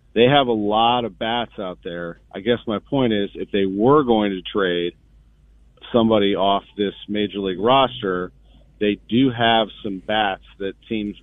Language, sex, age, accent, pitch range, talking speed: English, male, 40-59, American, 95-115 Hz, 170 wpm